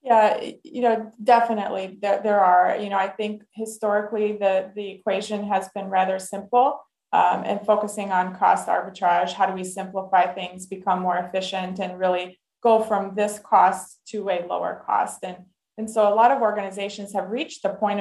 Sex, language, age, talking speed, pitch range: female, English, 20-39, 180 wpm, 190-220 Hz